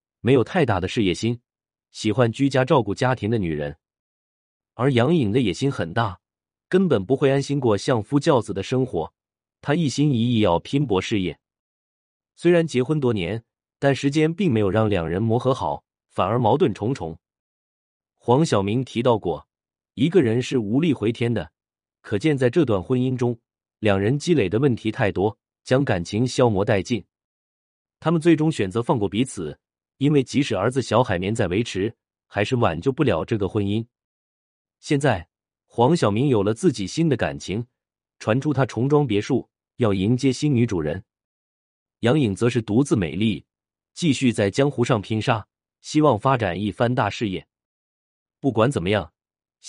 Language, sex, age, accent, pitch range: Chinese, male, 30-49, native, 100-135 Hz